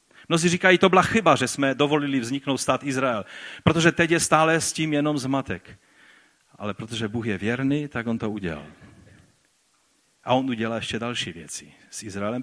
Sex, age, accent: male, 40-59, native